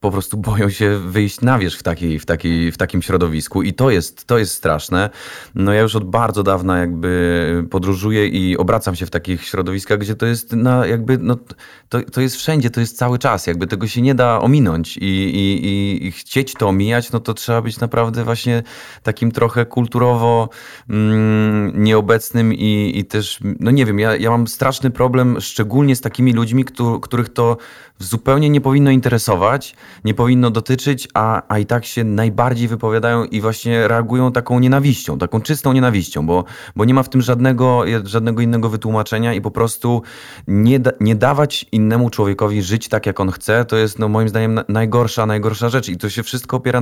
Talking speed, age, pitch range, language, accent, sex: 190 wpm, 30-49, 100-120 Hz, Polish, native, male